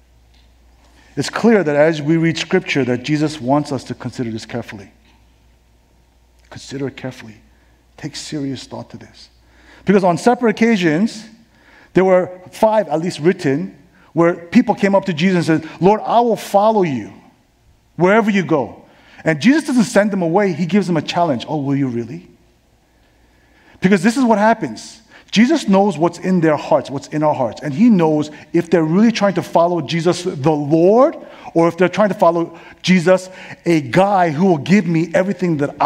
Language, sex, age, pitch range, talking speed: English, male, 50-69, 130-200 Hz, 175 wpm